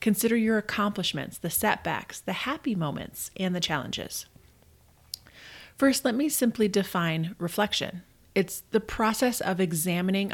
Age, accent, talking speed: 30-49, American, 130 wpm